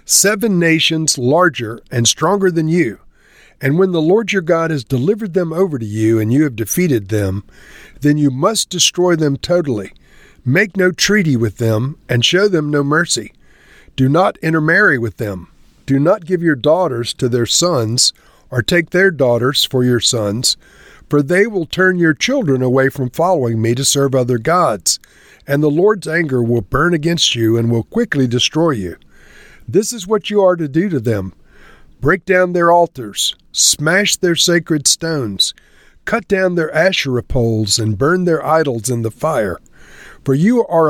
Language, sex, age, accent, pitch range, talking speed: English, male, 50-69, American, 125-175 Hz, 175 wpm